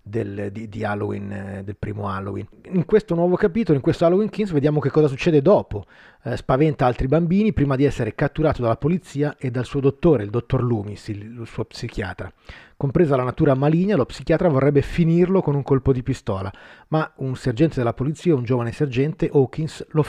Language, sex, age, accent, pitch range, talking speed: Italian, male, 30-49, native, 115-155 Hz, 190 wpm